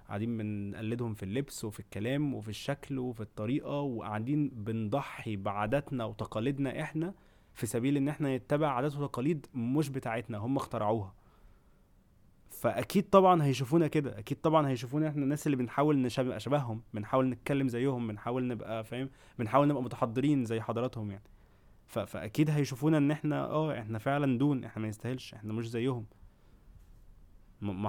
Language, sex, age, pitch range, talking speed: Arabic, male, 20-39, 110-140 Hz, 140 wpm